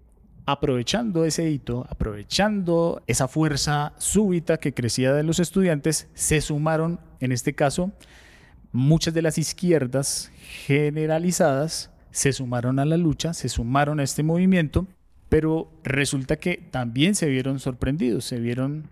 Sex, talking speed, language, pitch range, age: male, 130 wpm, Spanish, 125-160 Hz, 30-49